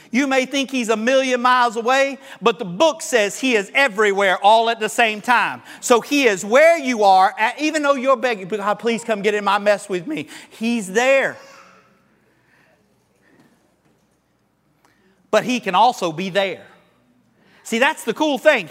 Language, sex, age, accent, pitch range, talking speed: English, male, 40-59, American, 225-275 Hz, 165 wpm